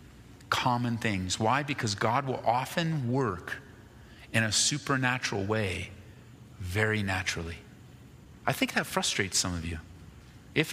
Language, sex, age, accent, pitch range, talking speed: English, male, 40-59, American, 115-175 Hz, 125 wpm